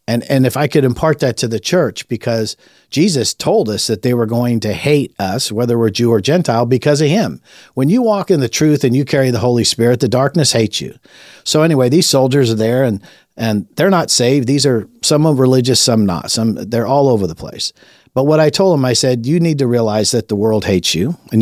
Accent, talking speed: American, 240 wpm